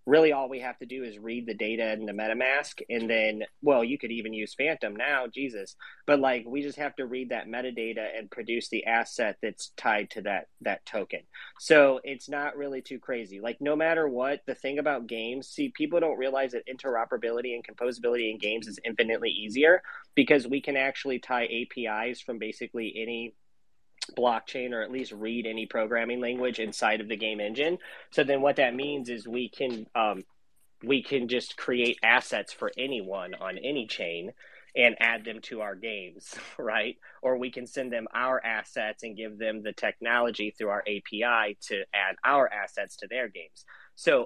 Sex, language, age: male, English, 30-49